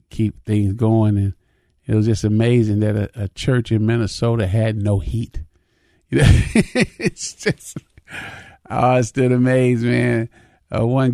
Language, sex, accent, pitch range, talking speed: English, male, American, 110-125 Hz, 150 wpm